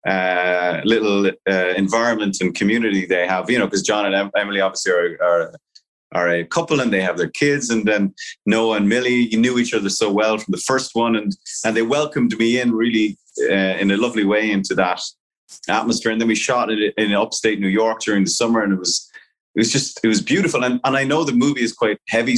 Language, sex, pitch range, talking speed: English, male, 100-125 Hz, 230 wpm